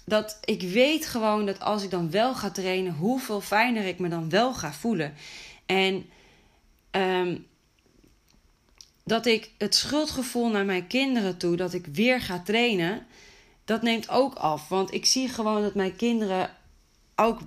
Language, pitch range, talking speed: Dutch, 185-240 Hz, 160 wpm